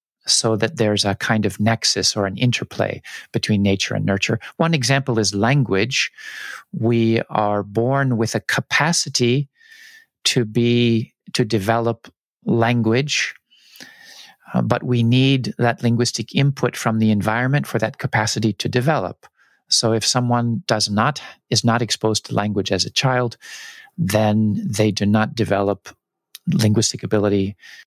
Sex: male